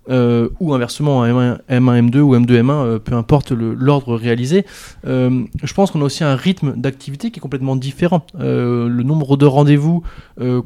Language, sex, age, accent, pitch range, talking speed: French, male, 20-39, French, 125-155 Hz, 190 wpm